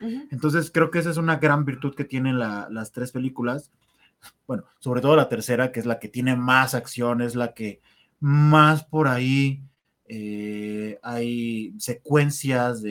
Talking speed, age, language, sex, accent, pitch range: 160 wpm, 30-49, Spanish, male, Mexican, 120-155 Hz